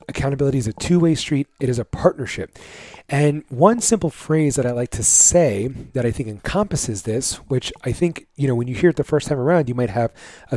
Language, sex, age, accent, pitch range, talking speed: English, male, 30-49, American, 120-155 Hz, 225 wpm